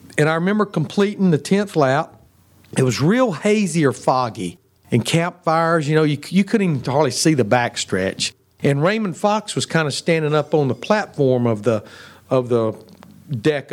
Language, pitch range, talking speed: English, 125-170 Hz, 170 wpm